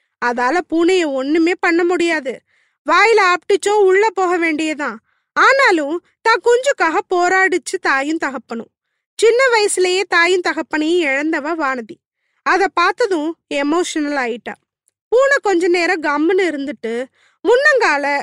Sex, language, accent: female, Tamil, native